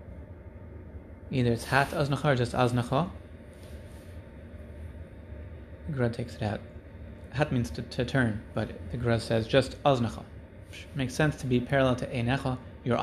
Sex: male